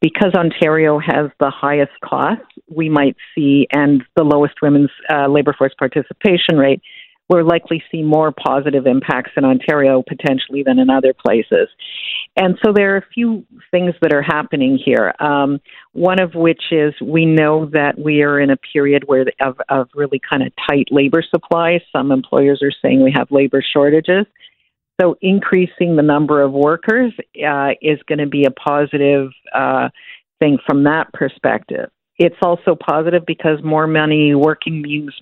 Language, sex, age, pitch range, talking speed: English, female, 50-69, 140-170 Hz, 165 wpm